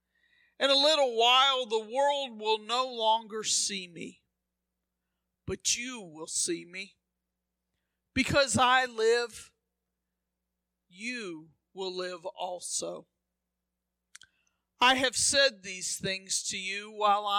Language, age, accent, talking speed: English, 50-69, American, 105 wpm